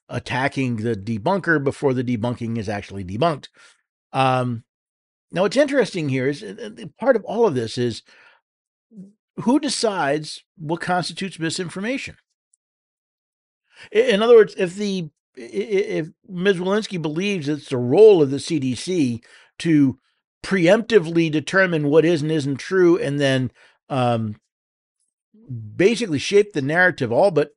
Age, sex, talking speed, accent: 50-69, male, 130 wpm, American